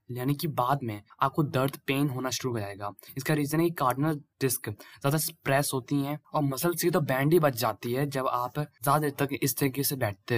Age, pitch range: 20-39, 125-170 Hz